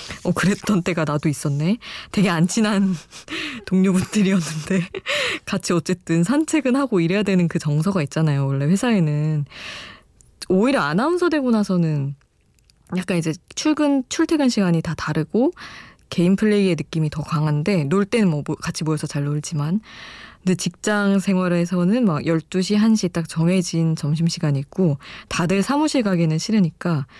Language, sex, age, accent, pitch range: Korean, female, 20-39, native, 155-200 Hz